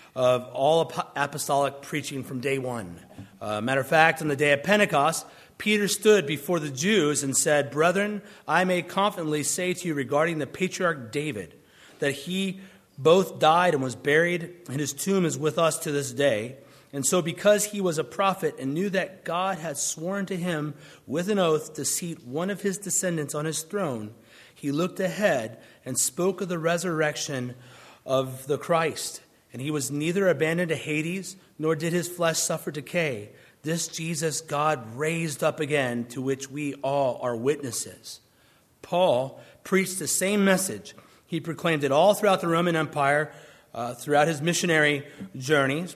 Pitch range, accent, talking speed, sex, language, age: 140-180 Hz, American, 170 wpm, male, English, 30-49